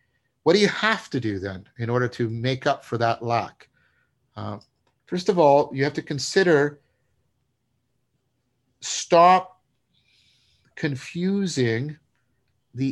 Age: 50-69